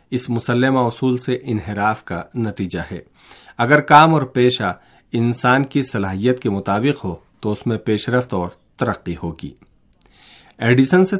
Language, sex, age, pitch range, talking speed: Urdu, male, 50-69, 105-135 Hz, 150 wpm